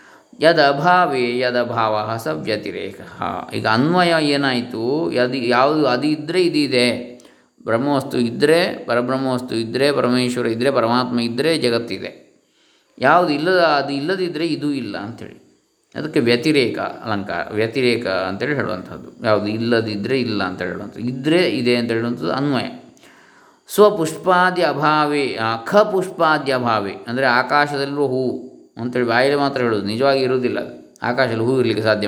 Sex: male